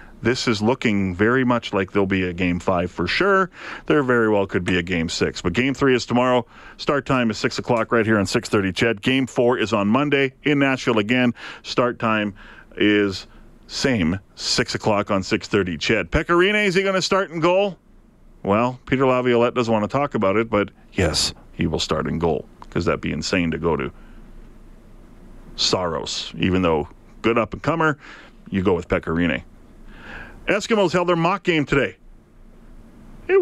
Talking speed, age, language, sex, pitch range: 180 wpm, 40-59, English, male, 110-145 Hz